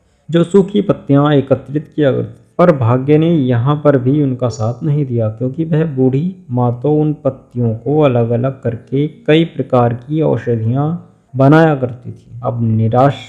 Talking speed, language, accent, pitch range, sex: 165 wpm, Hindi, native, 120-150 Hz, male